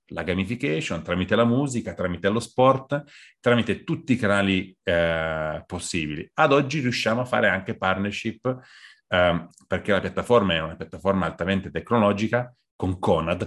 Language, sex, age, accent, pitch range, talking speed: Italian, male, 30-49, native, 85-115 Hz, 145 wpm